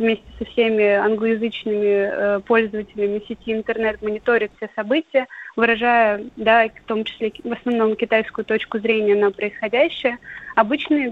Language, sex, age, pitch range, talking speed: Russian, female, 20-39, 210-235 Hz, 125 wpm